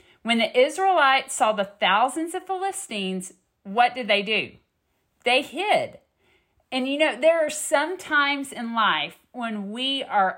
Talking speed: 150 wpm